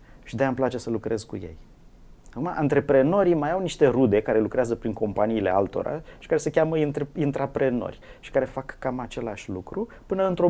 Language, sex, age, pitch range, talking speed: Romanian, male, 30-49, 105-145 Hz, 185 wpm